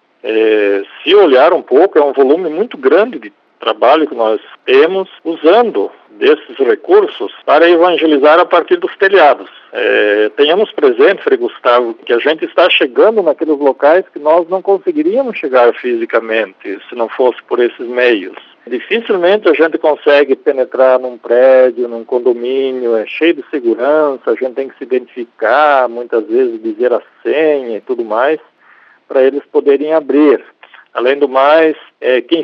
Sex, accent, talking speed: male, Brazilian, 155 wpm